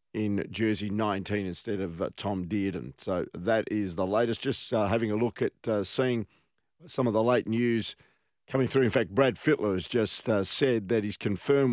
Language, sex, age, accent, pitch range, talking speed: English, male, 50-69, Australian, 105-135 Hz, 200 wpm